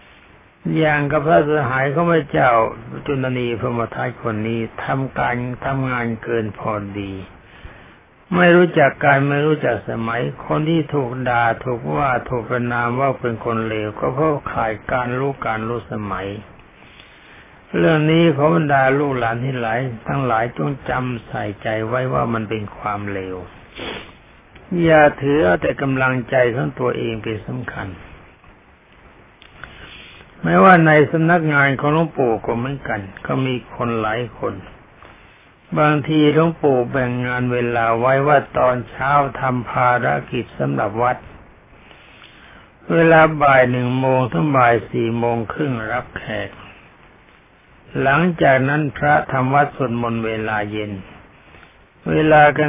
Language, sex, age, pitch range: Thai, male, 60-79, 115-145 Hz